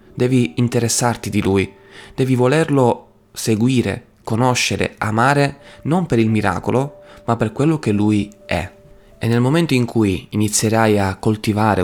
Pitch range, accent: 100-115 Hz, native